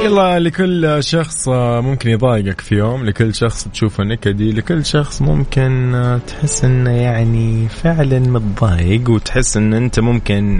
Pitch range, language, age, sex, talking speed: 100-135 Hz, Arabic, 20-39, male, 130 wpm